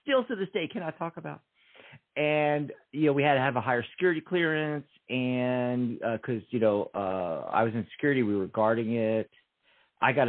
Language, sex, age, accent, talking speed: English, male, 50-69, American, 200 wpm